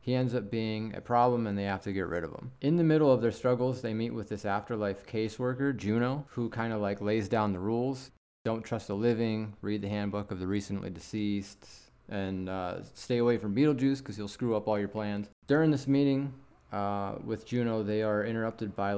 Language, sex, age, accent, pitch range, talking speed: English, male, 30-49, American, 100-125 Hz, 220 wpm